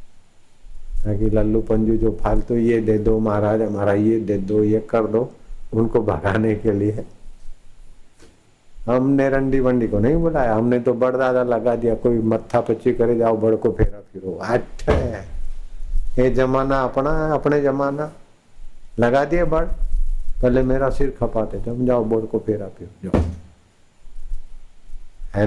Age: 50-69